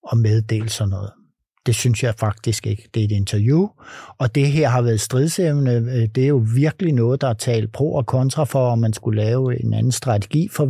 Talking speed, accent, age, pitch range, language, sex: 220 wpm, native, 60-79, 115-140 Hz, Danish, male